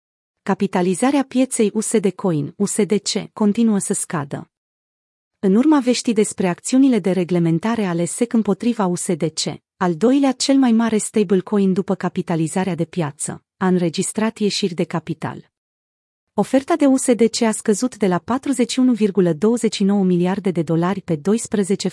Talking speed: 130 wpm